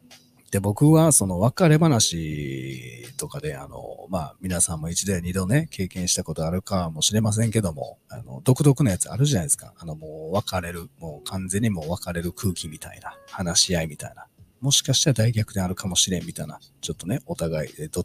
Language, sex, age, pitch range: Japanese, male, 40-59, 90-125 Hz